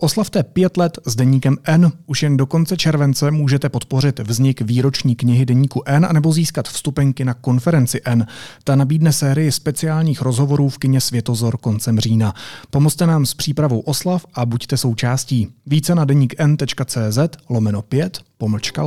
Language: Czech